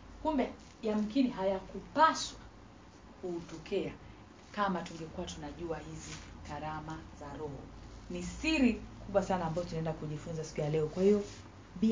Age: 40-59